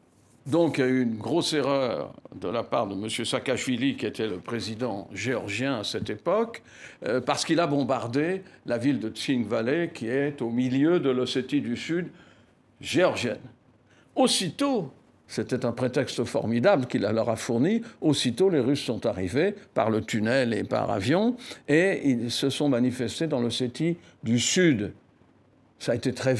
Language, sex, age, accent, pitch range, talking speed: French, male, 60-79, French, 115-155 Hz, 165 wpm